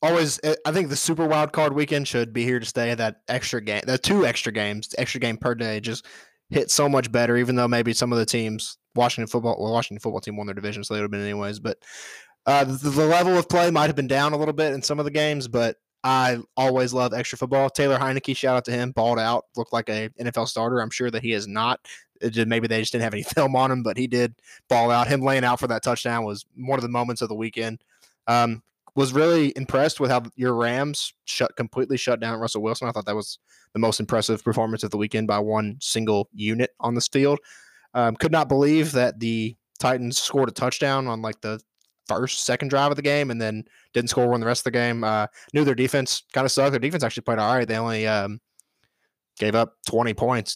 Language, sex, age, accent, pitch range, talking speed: English, male, 20-39, American, 110-135 Hz, 245 wpm